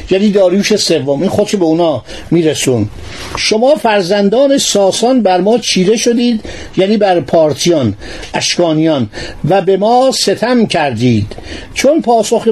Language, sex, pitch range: Persian, male, 170-230 Hz